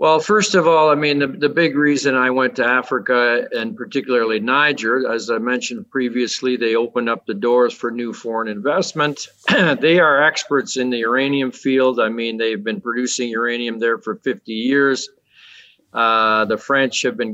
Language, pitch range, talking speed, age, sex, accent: English, 120-140 Hz, 180 wpm, 50-69, male, American